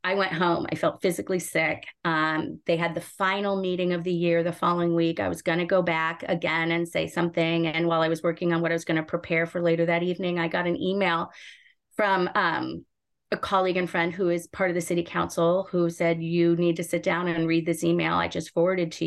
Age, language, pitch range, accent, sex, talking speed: 30-49, English, 170-195 Hz, American, female, 235 wpm